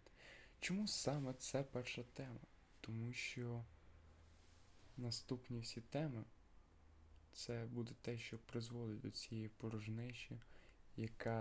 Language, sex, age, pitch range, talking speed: Ukrainian, male, 20-39, 100-120 Hz, 100 wpm